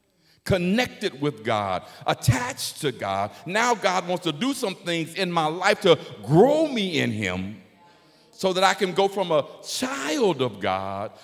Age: 50-69